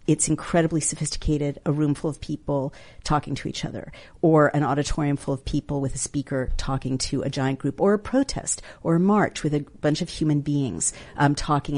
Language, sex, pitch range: English, female, 135-155 Hz